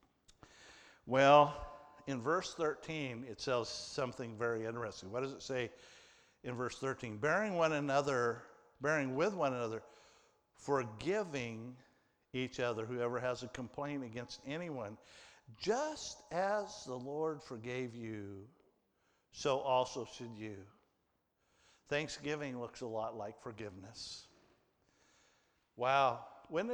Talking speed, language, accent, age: 110 wpm, English, American, 50-69